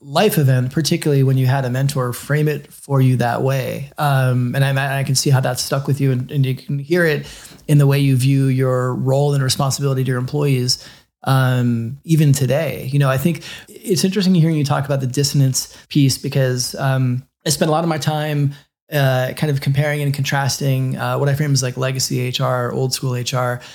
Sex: male